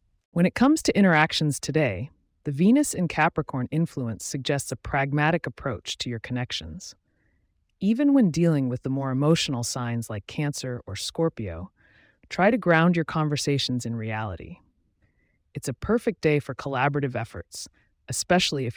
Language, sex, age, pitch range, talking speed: English, female, 30-49, 115-160 Hz, 145 wpm